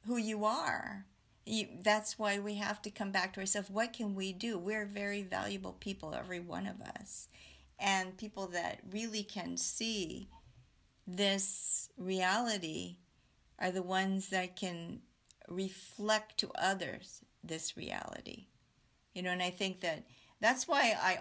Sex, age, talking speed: female, 50-69, 145 wpm